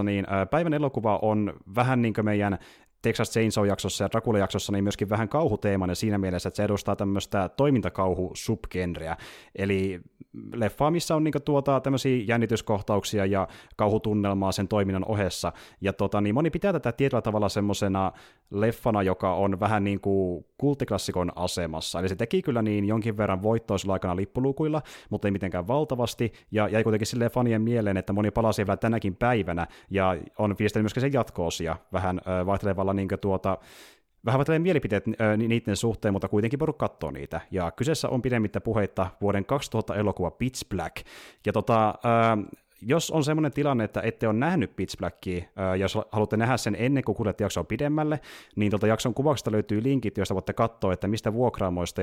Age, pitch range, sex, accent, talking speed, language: 30-49, 95-115 Hz, male, native, 165 wpm, Finnish